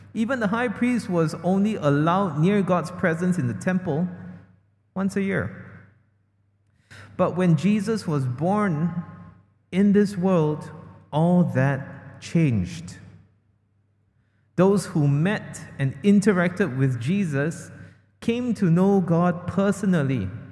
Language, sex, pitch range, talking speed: English, male, 110-175 Hz, 115 wpm